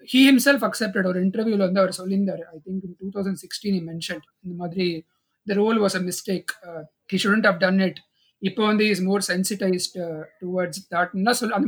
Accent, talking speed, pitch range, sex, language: native, 185 wpm, 180-225 Hz, male, Tamil